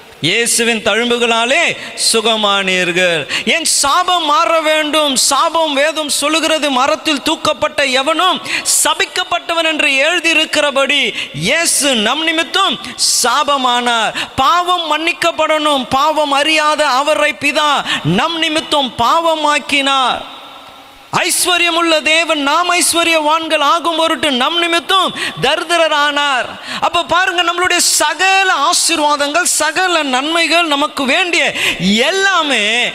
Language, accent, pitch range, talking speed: Tamil, native, 240-325 Hz, 75 wpm